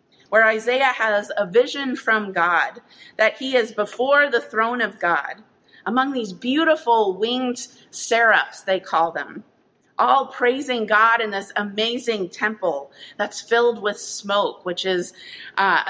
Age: 30-49